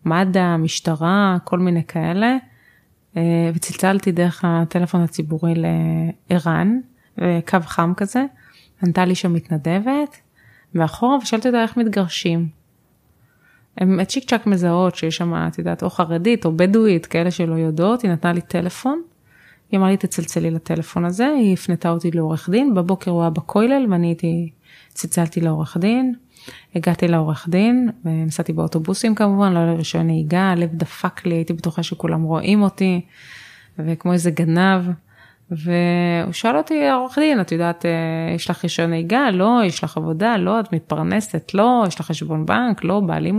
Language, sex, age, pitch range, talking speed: Hebrew, female, 20-39, 165-205 Hz, 145 wpm